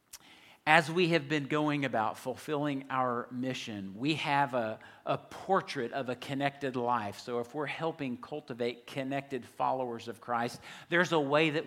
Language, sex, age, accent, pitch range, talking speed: English, male, 50-69, American, 130-175 Hz, 160 wpm